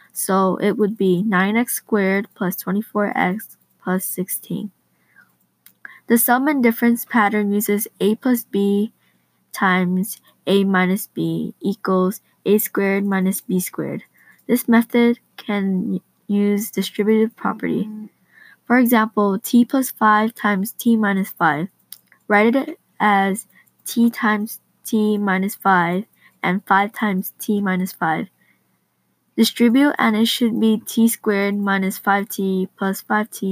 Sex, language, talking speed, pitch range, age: female, English, 125 wpm, 190-225 Hz, 10-29